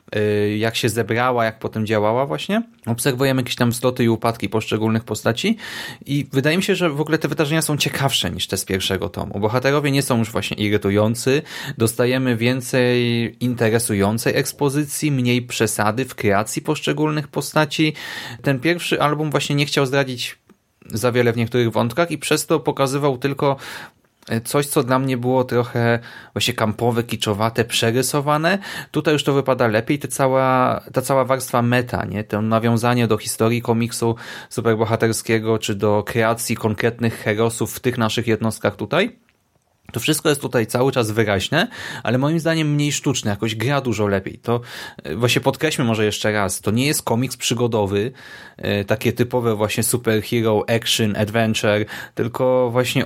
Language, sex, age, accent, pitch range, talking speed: Polish, male, 30-49, native, 110-135 Hz, 155 wpm